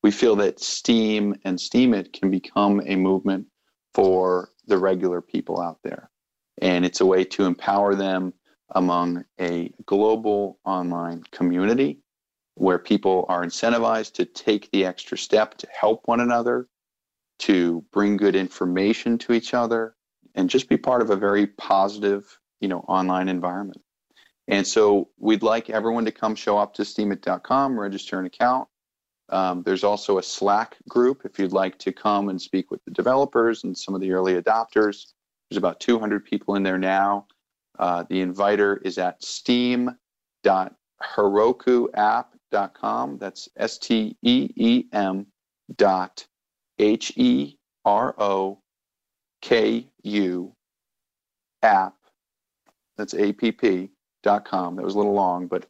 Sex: male